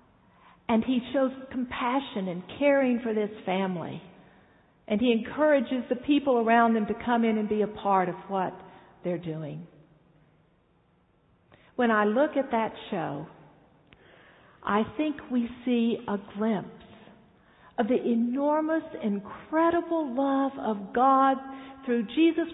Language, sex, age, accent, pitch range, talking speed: English, female, 50-69, American, 190-255 Hz, 130 wpm